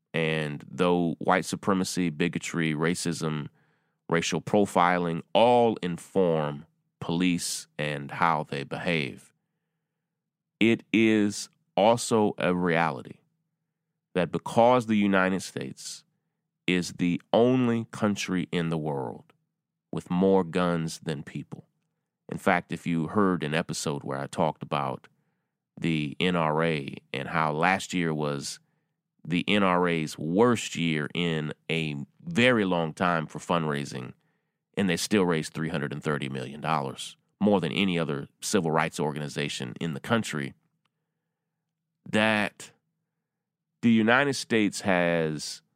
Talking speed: 115 wpm